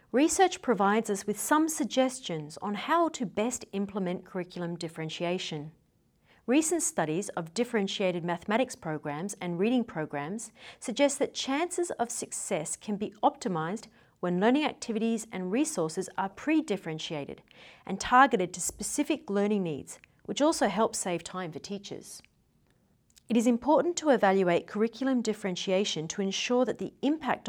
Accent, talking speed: Australian, 135 wpm